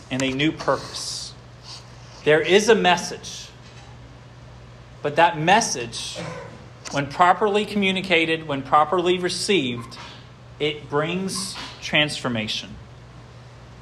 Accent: American